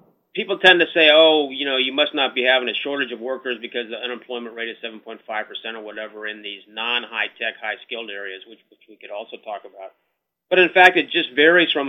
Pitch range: 115-140 Hz